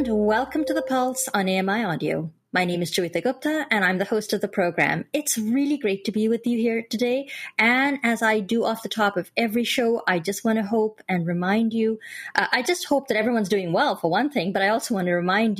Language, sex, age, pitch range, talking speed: English, female, 30-49, 180-230 Hz, 245 wpm